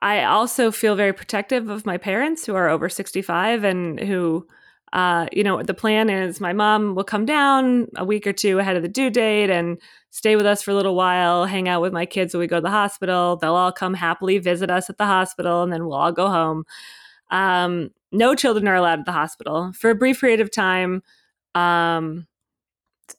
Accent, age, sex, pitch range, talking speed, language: American, 20-39, female, 175-215 Hz, 215 wpm, English